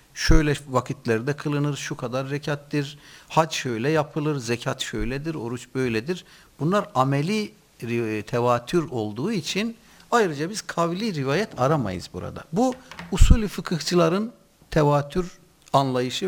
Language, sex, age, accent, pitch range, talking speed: Turkish, male, 60-79, native, 130-190 Hz, 110 wpm